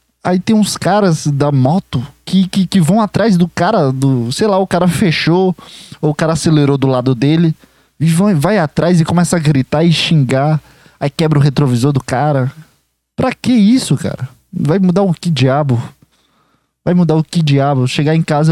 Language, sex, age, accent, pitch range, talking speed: Portuguese, male, 20-39, Brazilian, 140-180 Hz, 190 wpm